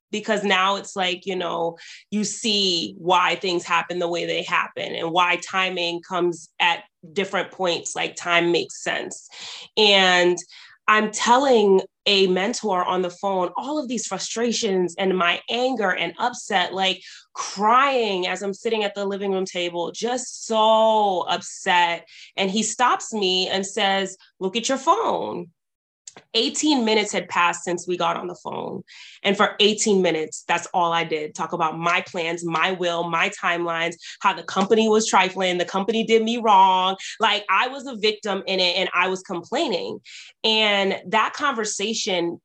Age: 20-39